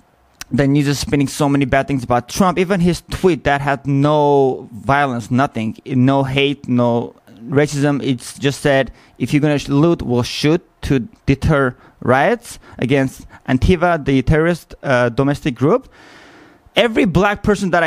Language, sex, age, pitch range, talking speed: English, male, 30-49, 135-165 Hz, 160 wpm